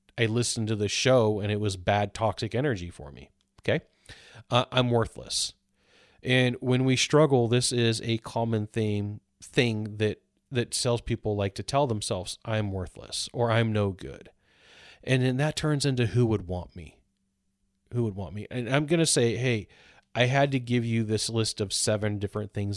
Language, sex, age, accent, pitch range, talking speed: English, male, 30-49, American, 100-130 Hz, 185 wpm